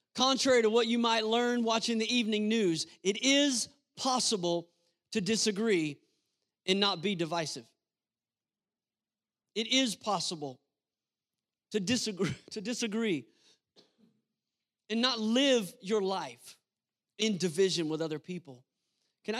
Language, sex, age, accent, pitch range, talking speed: English, male, 40-59, American, 170-265 Hz, 110 wpm